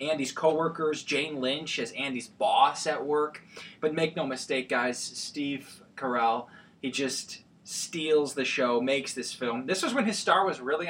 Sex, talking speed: male, 170 wpm